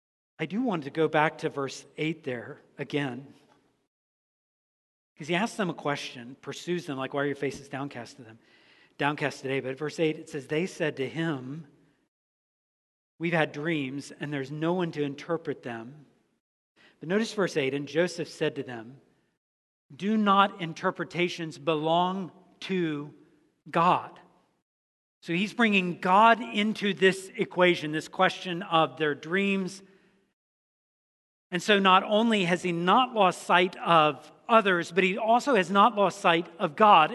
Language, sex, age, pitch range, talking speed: English, male, 50-69, 145-190 Hz, 155 wpm